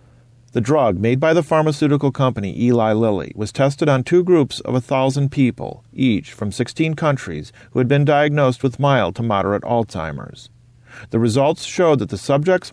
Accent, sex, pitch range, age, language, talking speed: American, male, 115-145 Hz, 40-59, English, 170 wpm